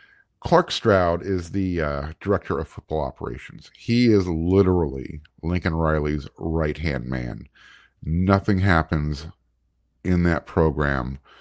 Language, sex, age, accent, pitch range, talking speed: English, male, 50-69, American, 75-100 Hz, 110 wpm